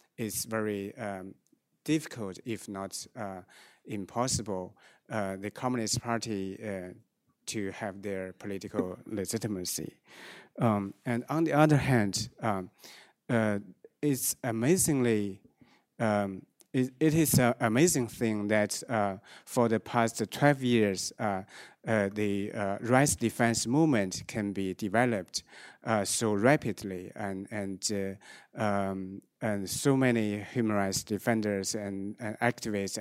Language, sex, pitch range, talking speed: English, male, 100-120 Hz, 125 wpm